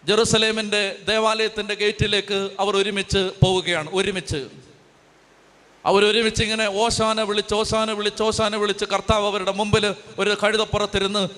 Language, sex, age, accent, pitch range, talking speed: Malayalam, male, 30-49, native, 185-220 Hz, 110 wpm